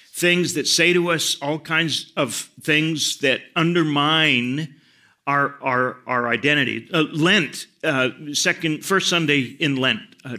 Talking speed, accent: 140 wpm, American